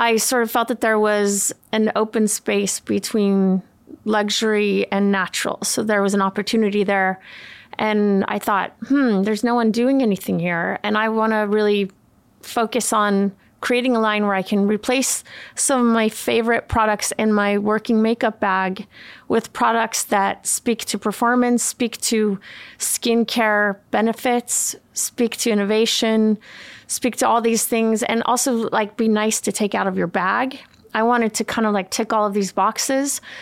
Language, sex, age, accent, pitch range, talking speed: English, female, 30-49, American, 205-235 Hz, 165 wpm